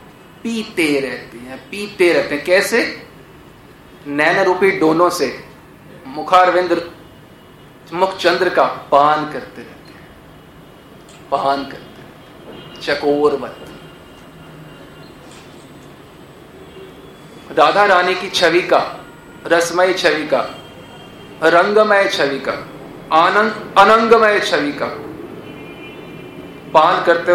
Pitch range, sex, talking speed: 145-180 Hz, male, 90 wpm